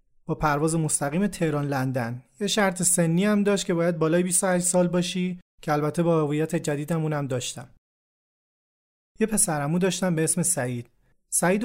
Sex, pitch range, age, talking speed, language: male, 145-180 Hz, 30-49, 155 wpm, Persian